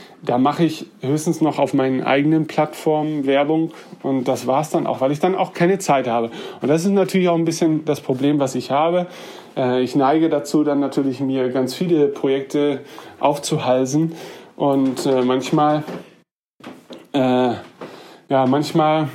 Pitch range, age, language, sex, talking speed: 130-155 Hz, 30-49, German, male, 150 wpm